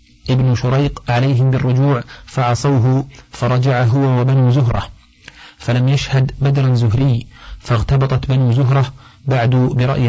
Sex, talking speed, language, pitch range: male, 105 wpm, Arabic, 120-135 Hz